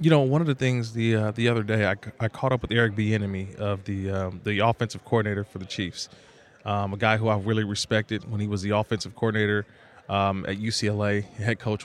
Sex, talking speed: male, 230 wpm